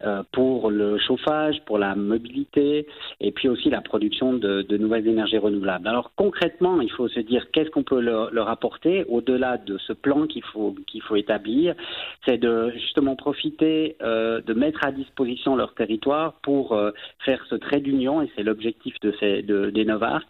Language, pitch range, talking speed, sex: French, 110-145 Hz, 185 wpm, male